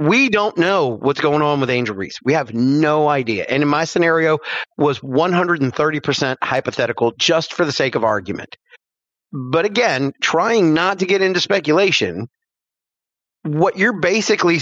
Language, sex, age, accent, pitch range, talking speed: English, male, 30-49, American, 145-210 Hz, 155 wpm